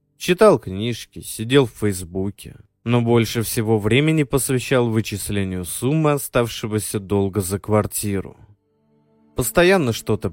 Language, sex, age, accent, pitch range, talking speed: Russian, male, 20-39, native, 105-140 Hz, 105 wpm